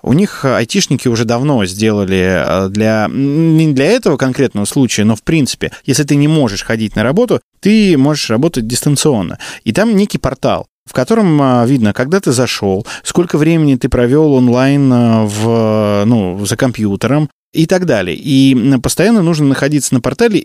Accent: native